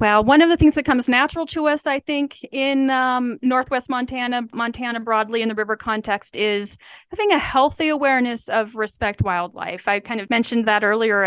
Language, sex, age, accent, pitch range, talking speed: English, female, 30-49, American, 215-285 Hz, 190 wpm